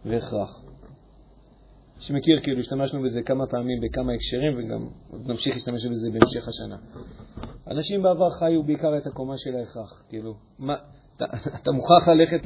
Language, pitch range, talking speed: Hebrew, 125-165 Hz, 135 wpm